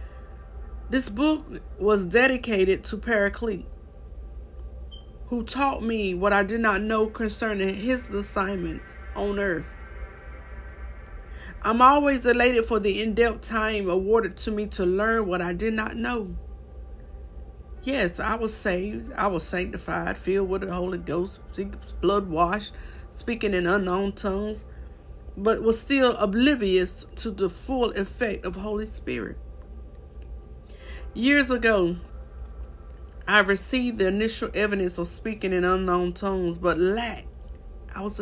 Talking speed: 125 wpm